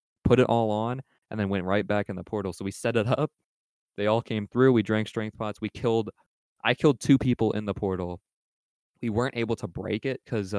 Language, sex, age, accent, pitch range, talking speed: English, male, 20-39, American, 95-120 Hz, 230 wpm